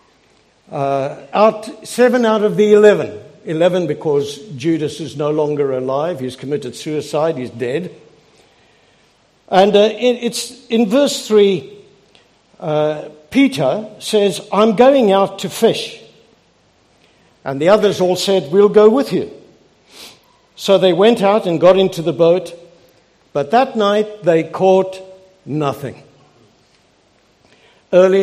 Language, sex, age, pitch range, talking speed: English, male, 60-79, 160-235 Hz, 125 wpm